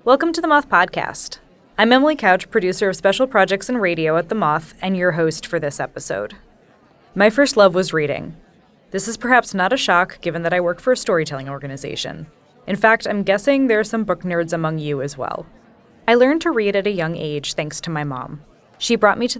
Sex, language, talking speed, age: female, English, 220 wpm, 10-29